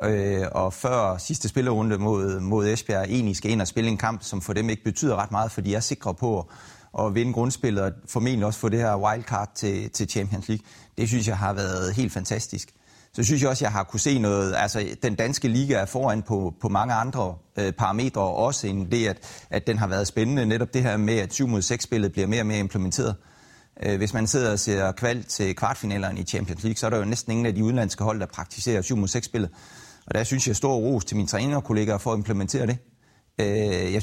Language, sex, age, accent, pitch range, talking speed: Danish, male, 30-49, native, 100-120 Hz, 245 wpm